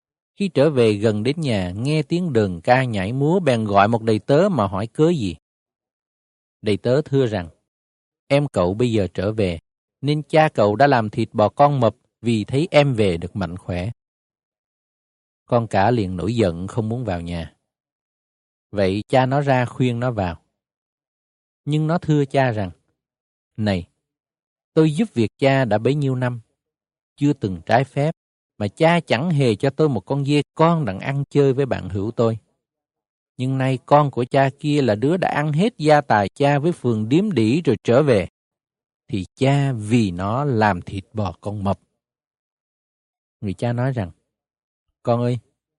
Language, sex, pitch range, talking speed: Vietnamese, male, 100-145 Hz, 175 wpm